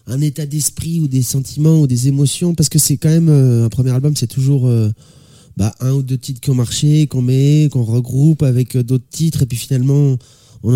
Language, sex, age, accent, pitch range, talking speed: French, male, 20-39, French, 120-145 Hz, 230 wpm